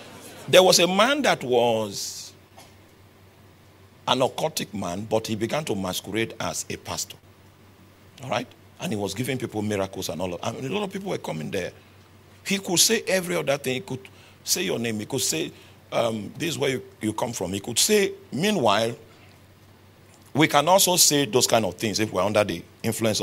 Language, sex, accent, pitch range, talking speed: English, male, Nigerian, 100-150 Hz, 200 wpm